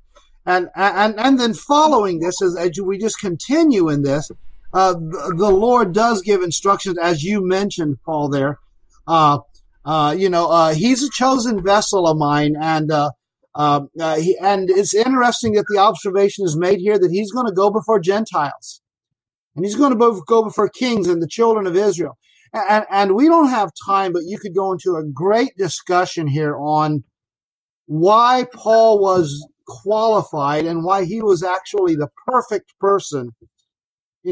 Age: 40-59